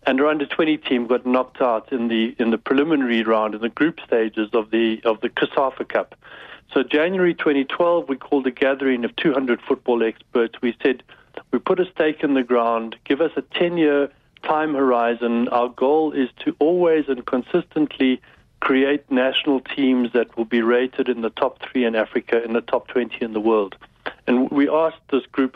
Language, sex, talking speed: English, male, 190 wpm